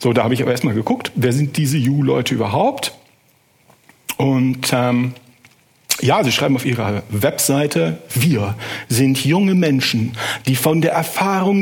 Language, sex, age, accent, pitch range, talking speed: German, male, 60-79, German, 125-165 Hz, 145 wpm